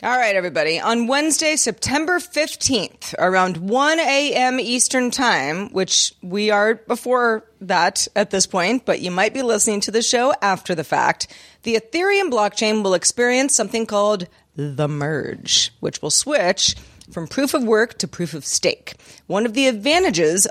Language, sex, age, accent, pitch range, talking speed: English, female, 30-49, American, 175-240 Hz, 160 wpm